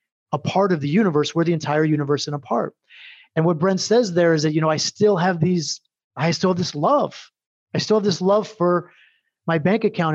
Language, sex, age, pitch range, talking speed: English, male, 30-49, 155-195 Hz, 230 wpm